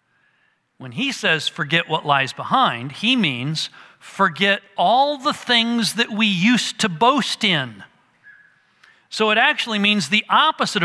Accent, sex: American, male